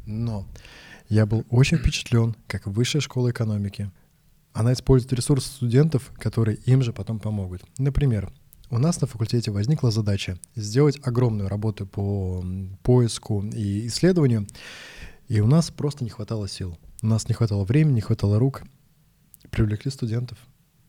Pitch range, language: 110-130 Hz, Russian